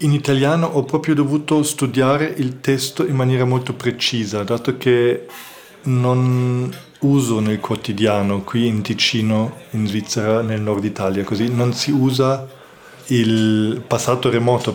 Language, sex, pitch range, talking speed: Italian, male, 110-135 Hz, 135 wpm